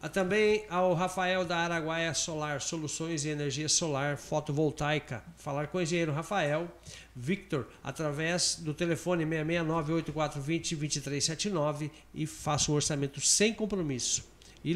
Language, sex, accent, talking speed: Portuguese, male, Brazilian, 125 wpm